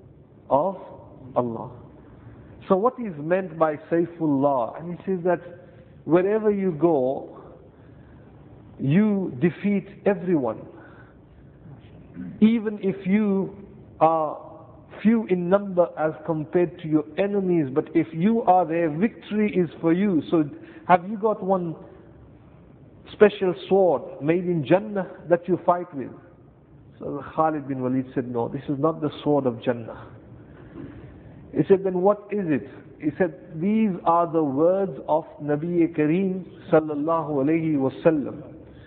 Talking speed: 130 wpm